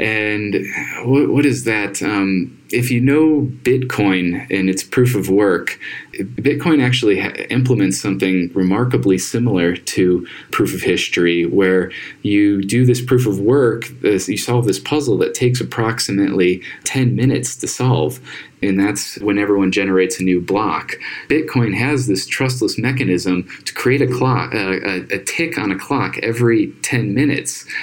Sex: male